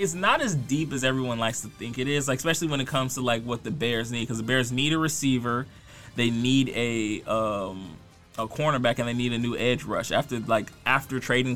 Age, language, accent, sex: 20-39, English, American, male